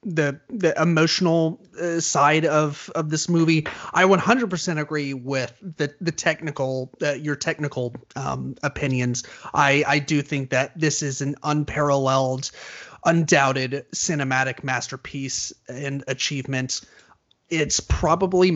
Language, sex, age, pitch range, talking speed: English, male, 30-49, 140-170 Hz, 120 wpm